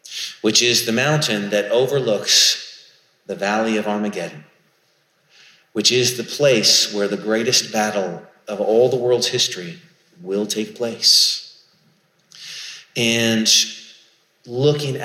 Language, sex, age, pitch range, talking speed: English, male, 30-49, 110-135 Hz, 110 wpm